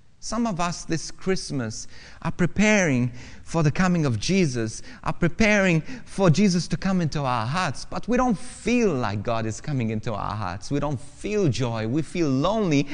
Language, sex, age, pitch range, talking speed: English, male, 30-49, 125-175 Hz, 180 wpm